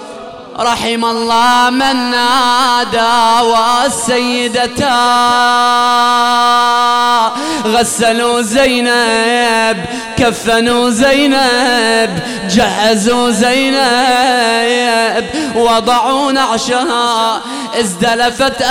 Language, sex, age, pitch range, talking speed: English, male, 20-39, 235-265 Hz, 45 wpm